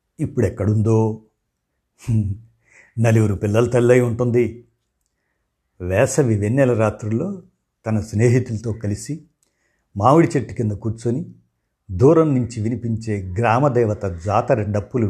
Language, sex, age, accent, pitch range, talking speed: Telugu, male, 60-79, native, 105-125 Hz, 85 wpm